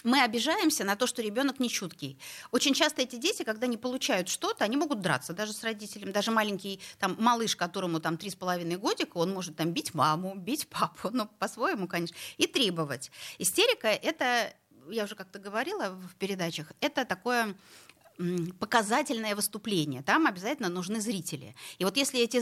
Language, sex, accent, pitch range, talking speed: Russian, female, native, 165-240 Hz, 165 wpm